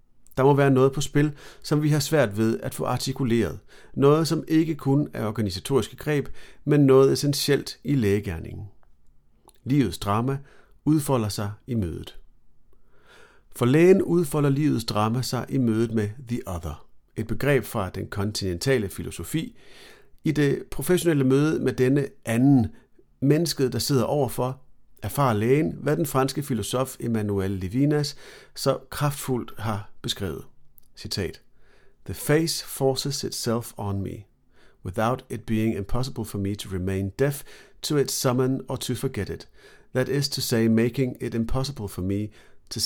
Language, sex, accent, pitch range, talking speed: Danish, male, native, 105-140 Hz, 145 wpm